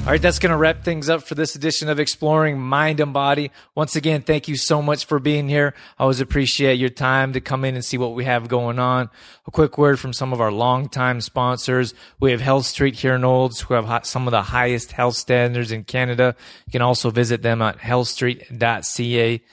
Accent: American